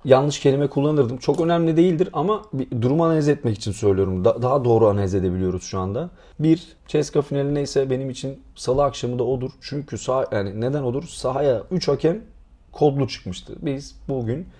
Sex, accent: male, native